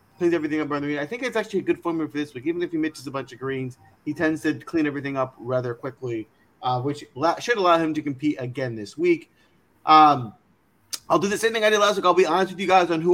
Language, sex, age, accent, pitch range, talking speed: English, male, 30-49, American, 135-185 Hz, 270 wpm